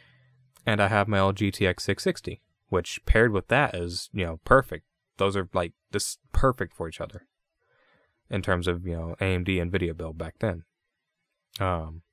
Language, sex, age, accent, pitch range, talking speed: English, male, 20-39, American, 90-115 Hz, 175 wpm